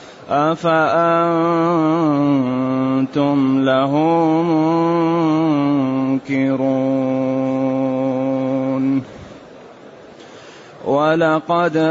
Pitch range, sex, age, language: 145-170 Hz, male, 30-49, Arabic